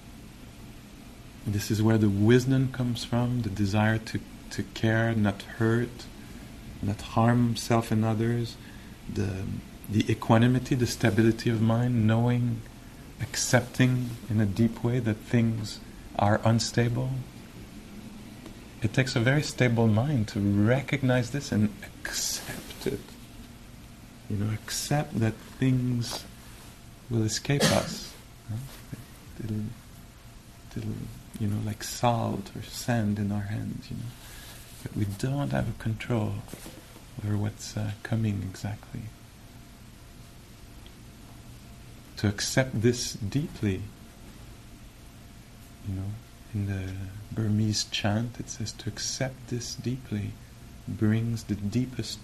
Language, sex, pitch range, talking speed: English, male, 110-120 Hz, 115 wpm